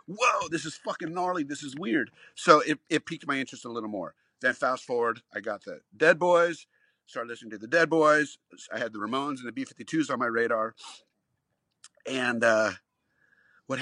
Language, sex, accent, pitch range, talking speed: English, male, American, 110-160 Hz, 190 wpm